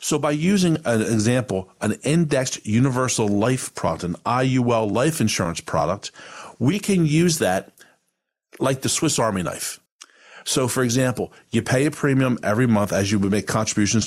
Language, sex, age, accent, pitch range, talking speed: English, male, 50-69, American, 110-140 Hz, 160 wpm